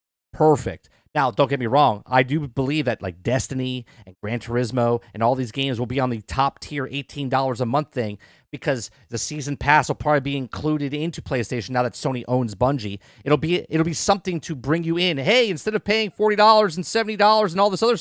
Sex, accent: male, American